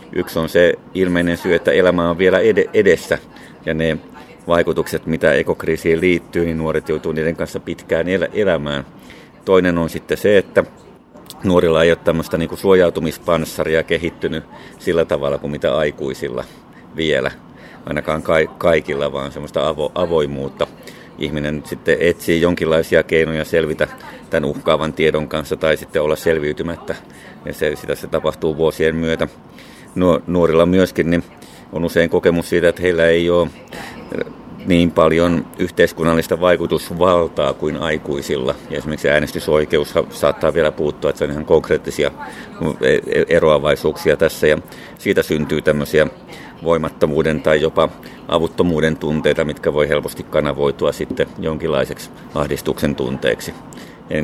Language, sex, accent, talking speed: Finnish, male, native, 125 wpm